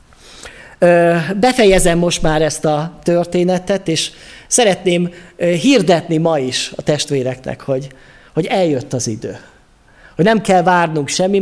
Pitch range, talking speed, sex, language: 150-190 Hz, 120 wpm, male, Hungarian